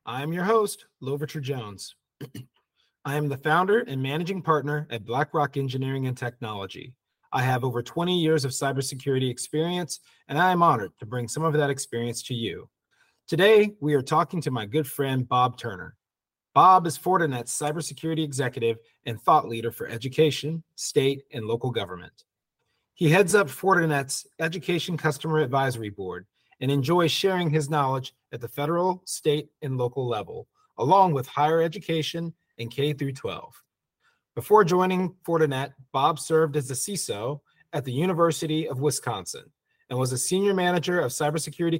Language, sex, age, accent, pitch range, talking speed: English, male, 30-49, American, 130-165 Hz, 160 wpm